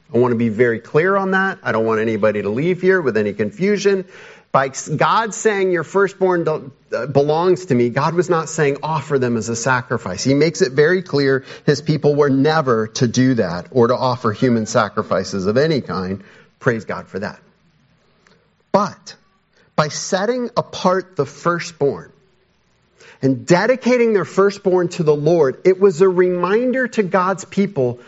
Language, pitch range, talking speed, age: English, 135-200 Hz, 170 wpm, 40-59